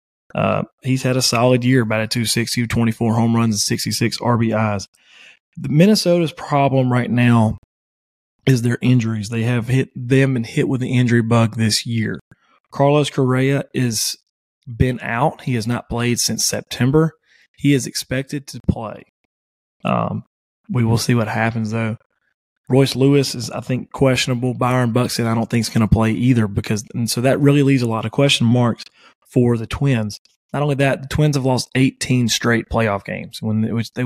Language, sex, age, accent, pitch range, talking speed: English, male, 30-49, American, 115-130 Hz, 180 wpm